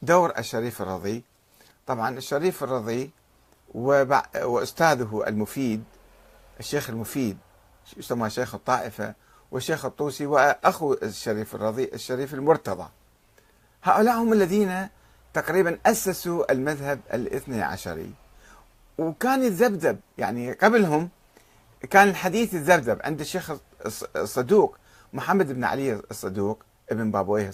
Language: Arabic